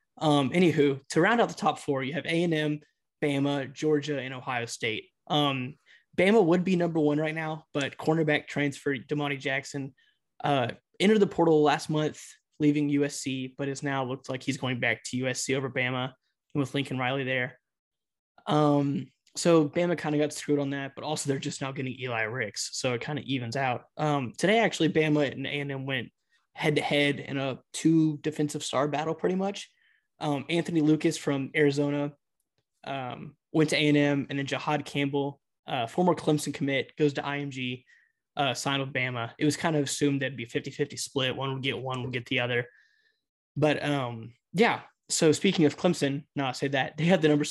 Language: English